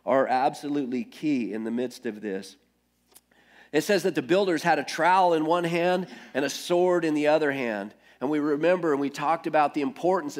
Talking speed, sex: 200 wpm, male